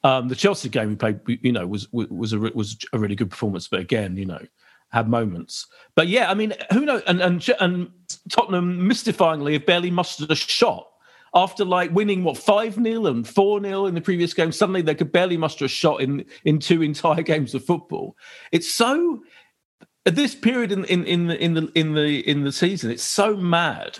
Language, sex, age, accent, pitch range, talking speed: English, male, 40-59, British, 135-200 Hz, 205 wpm